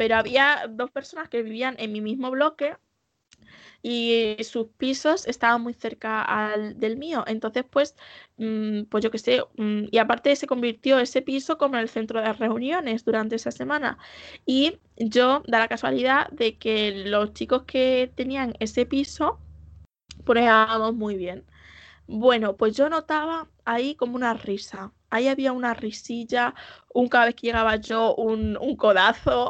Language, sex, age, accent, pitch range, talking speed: Spanish, female, 20-39, Spanish, 225-270 Hz, 160 wpm